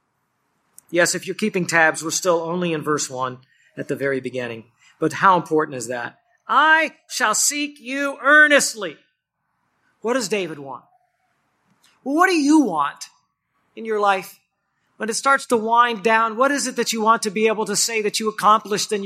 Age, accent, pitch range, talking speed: 40-59, American, 175-260 Hz, 185 wpm